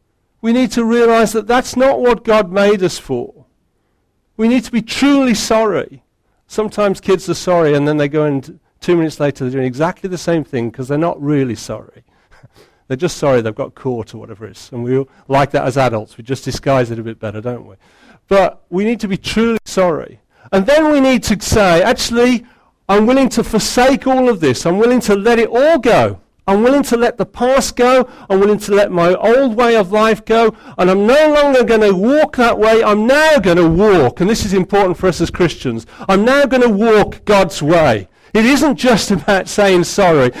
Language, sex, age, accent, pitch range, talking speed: English, male, 50-69, British, 160-230 Hz, 220 wpm